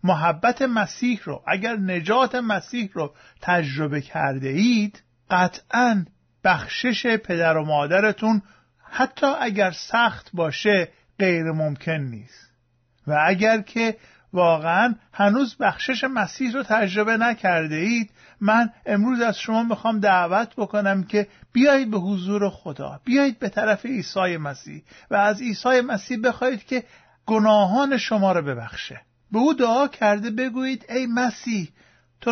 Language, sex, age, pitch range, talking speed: Persian, male, 50-69, 185-235 Hz, 125 wpm